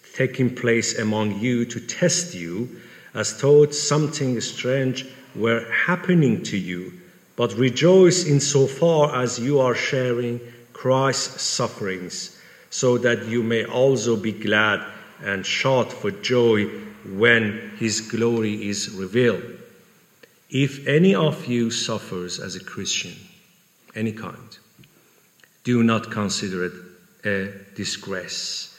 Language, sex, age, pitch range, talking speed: English, male, 50-69, 100-130 Hz, 120 wpm